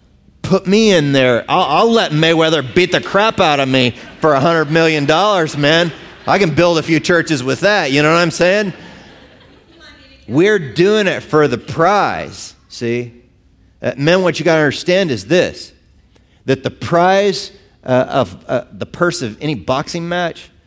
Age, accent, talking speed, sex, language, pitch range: 40-59, American, 170 wpm, male, English, 145-190 Hz